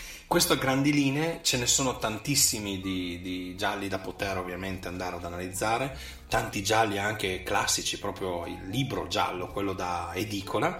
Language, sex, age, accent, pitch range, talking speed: Italian, male, 30-49, native, 95-120 Hz, 155 wpm